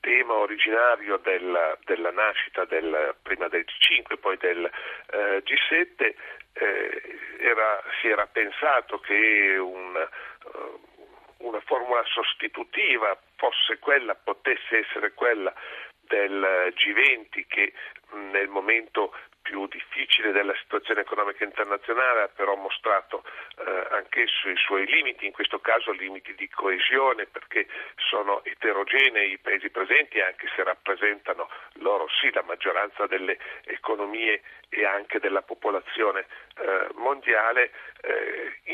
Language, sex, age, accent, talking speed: Italian, male, 40-59, native, 120 wpm